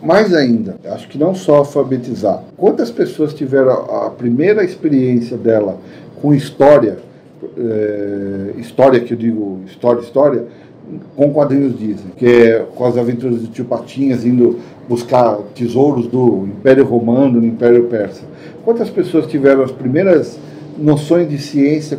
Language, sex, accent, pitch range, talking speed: Portuguese, male, Brazilian, 120-165 Hz, 140 wpm